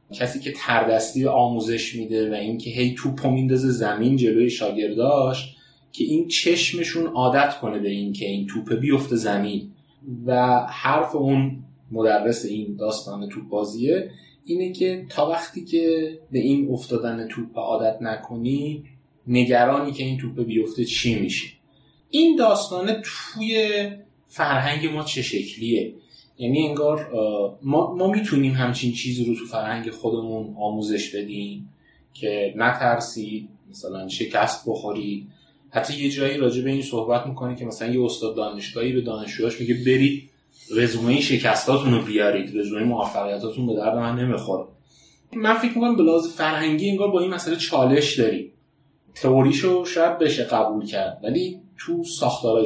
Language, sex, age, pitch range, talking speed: Persian, male, 30-49, 110-145 Hz, 140 wpm